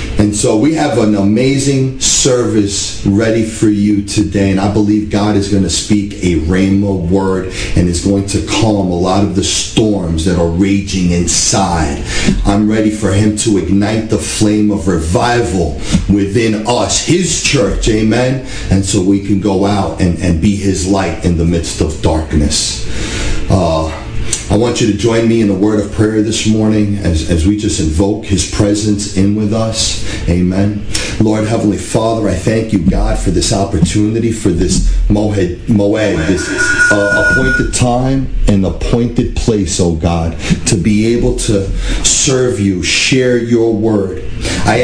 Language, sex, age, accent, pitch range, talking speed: English, male, 40-59, American, 95-115 Hz, 165 wpm